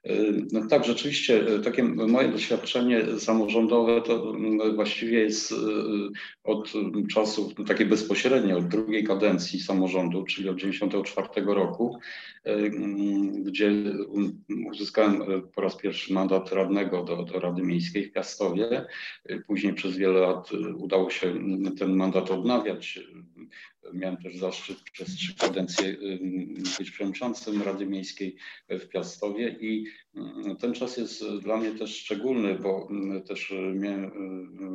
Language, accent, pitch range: Polish, native, 95-105 Hz